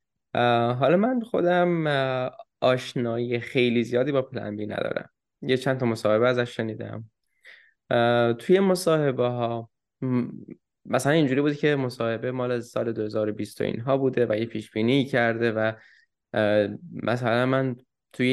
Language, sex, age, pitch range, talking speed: Persian, male, 10-29, 115-140 Hz, 120 wpm